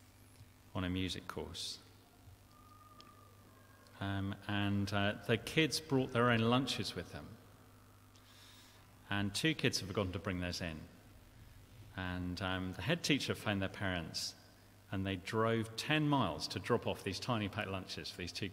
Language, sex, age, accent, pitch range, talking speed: English, male, 40-59, British, 95-120 Hz, 150 wpm